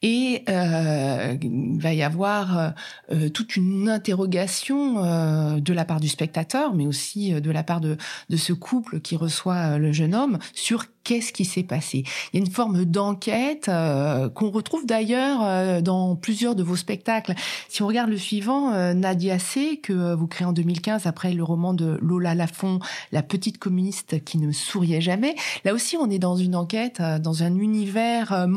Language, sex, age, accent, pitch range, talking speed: French, female, 30-49, French, 170-220 Hz, 190 wpm